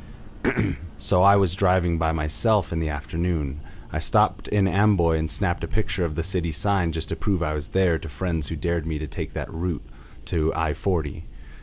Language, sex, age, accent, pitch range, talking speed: English, male, 30-49, American, 80-95 Hz, 195 wpm